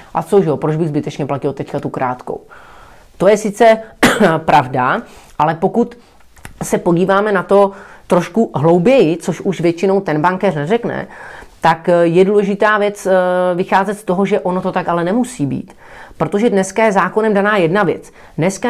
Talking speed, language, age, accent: 160 wpm, Czech, 30-49, native